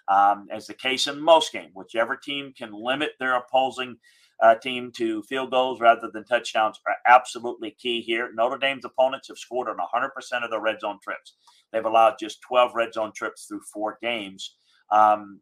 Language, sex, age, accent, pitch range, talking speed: English, male, 40-59, American, 115-135 Hz, 185 wpm